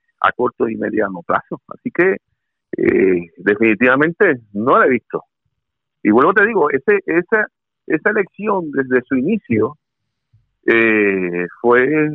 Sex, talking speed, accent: male, 130 wpm, Venezuelan